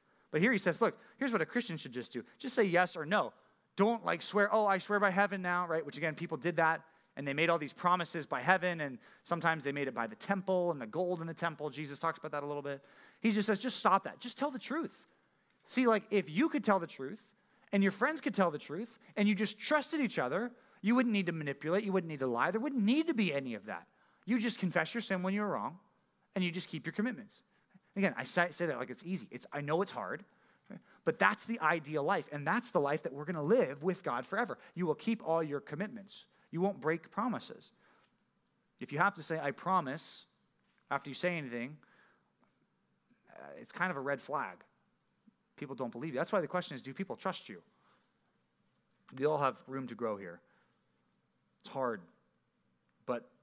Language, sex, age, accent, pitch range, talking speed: English, male, 30-49, American, 150-210 Hz, 230 wpm